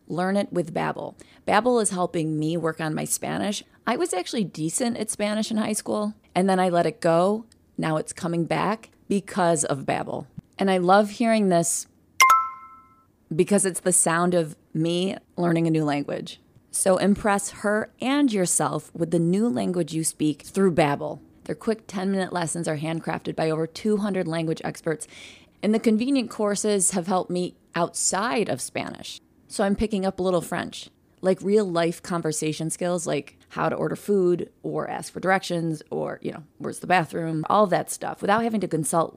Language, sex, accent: English, female, American